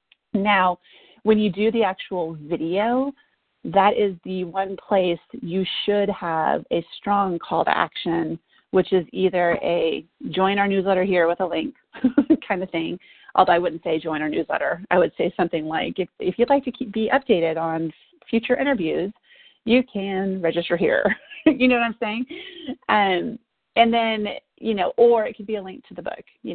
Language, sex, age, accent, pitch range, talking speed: English, female, 30-49, American, 175-230 Hz, 180 wpm